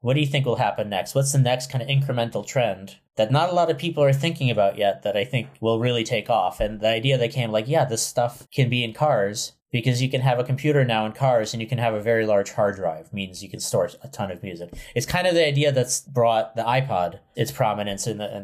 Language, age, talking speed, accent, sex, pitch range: English, 30-49, 275 wpm, American, male, 100-130 Hz